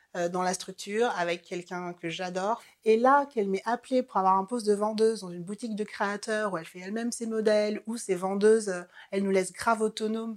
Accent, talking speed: French, 215 wpm